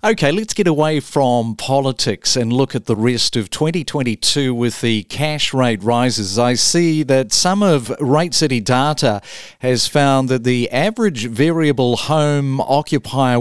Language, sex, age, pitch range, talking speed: English, male, 50-69, 125-160 Hz, 150 wpm